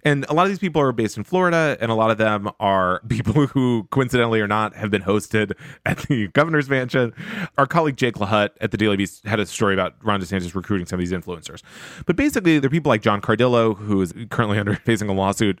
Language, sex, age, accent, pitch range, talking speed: English, male, 20-39, American, 105-150 Hz, 235 wpm